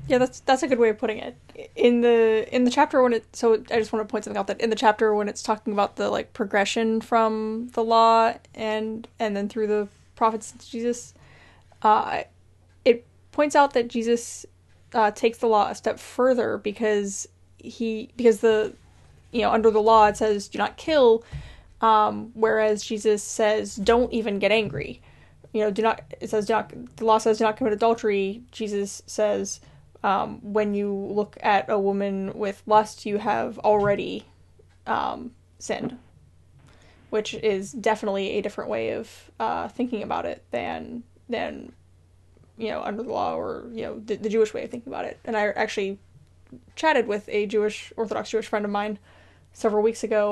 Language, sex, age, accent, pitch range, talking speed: English, female, 10-29, American, 205-235 Hz, 185 wpm